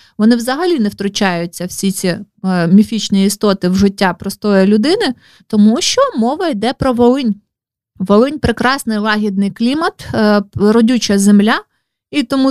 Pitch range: 200-240 Hz